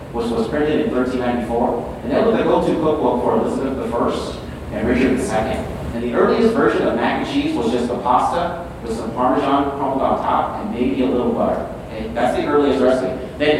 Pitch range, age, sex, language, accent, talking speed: 115-145 Hz, 30-49, male, English, American, 205 wpm